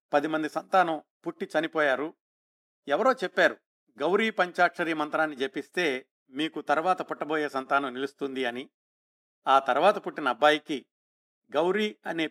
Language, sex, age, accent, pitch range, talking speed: Telugu, male, 50-69, native, 150-200 Hz, 110 wpm